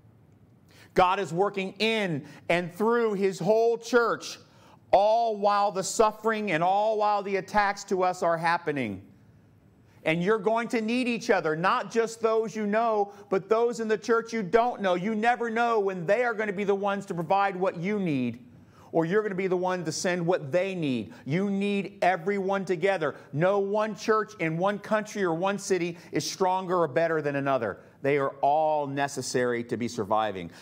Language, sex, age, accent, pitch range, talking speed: English, male, 40-59, American, 125-205 Hz, 190 wpm